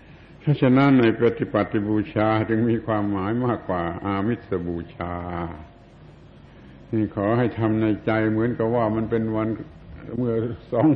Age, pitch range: 70-89, 100-120 Hz